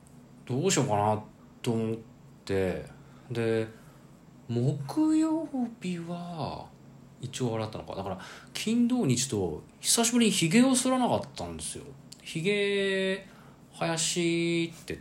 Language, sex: Japanese, male